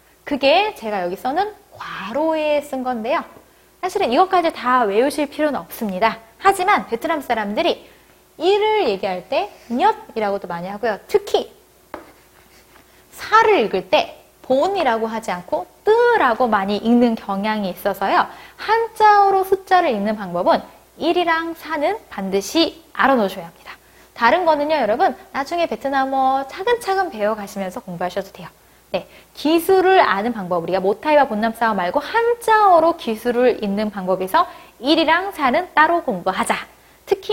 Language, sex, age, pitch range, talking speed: English, female, 20-39, 220-365 Hz, 115 wpm